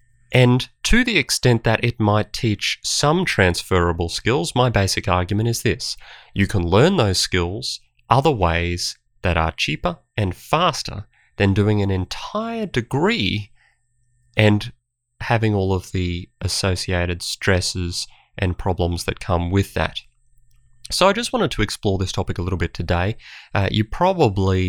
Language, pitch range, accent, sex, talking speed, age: English, 90-120 Hz, Australian, male, 150 wpm, 30-49